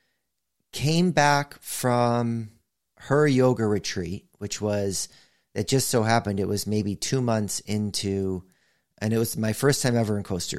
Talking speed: 155 wpm